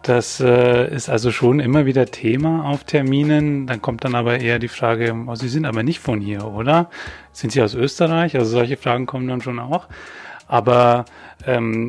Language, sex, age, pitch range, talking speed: German, male, 30-49, 115-130 Hz, 190 wpm